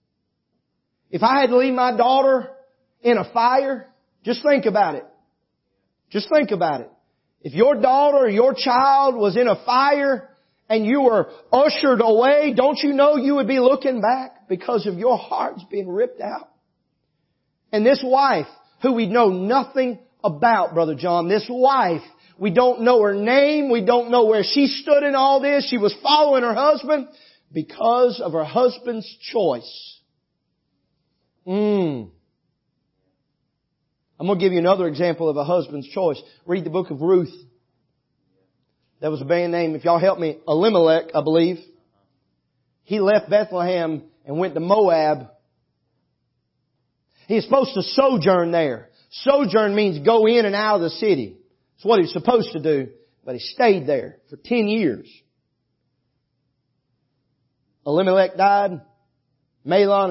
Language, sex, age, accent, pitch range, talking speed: English, male, 40-59, American, 165-255 Hz, 150 wpm